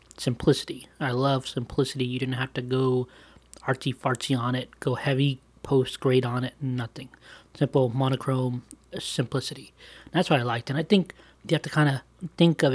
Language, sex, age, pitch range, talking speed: English, male, 20-39, 130-155 Hz, 175 wpm